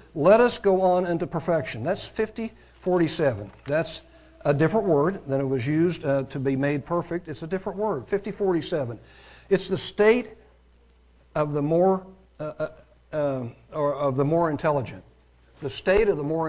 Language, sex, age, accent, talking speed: English, male, 60-79, American, 165 wpm